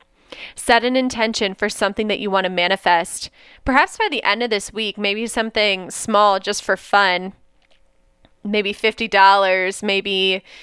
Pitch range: 185-220 Hz